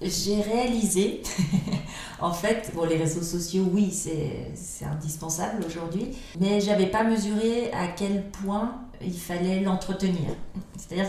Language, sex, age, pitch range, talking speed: French, female, 40-59, 165-195 Hz, 140 wpm